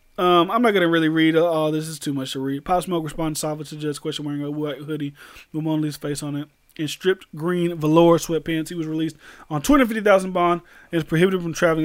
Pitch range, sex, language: 155-215 Hz, male, English